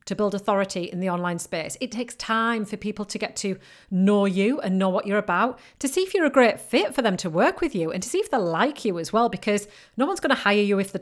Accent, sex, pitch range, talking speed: British, female, 200-255 Hz, 285 wpm